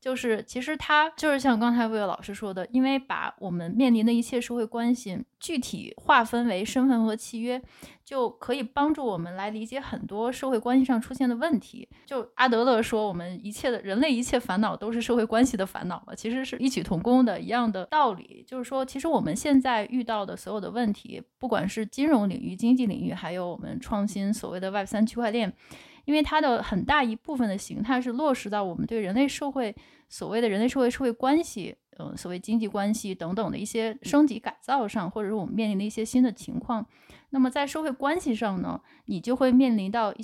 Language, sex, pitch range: Chinese, female, 210-260 Hz